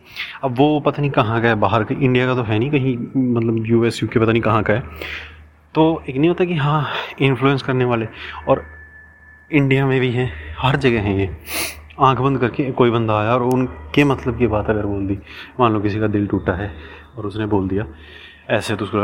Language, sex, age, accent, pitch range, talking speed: Hindi, male, 30-49, native, 105-130 Hz, 220 wpm